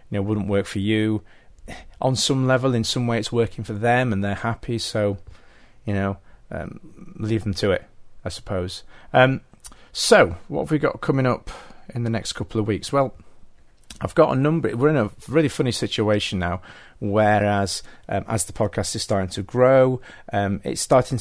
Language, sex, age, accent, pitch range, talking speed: English, male, 40-59, British, 100-115 Hz, 190 wpm